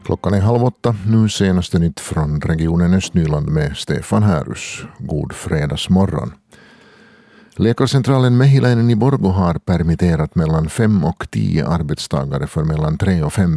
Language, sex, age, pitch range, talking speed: Swedish, male, 50-69, 80-100 Hz, 135 wpm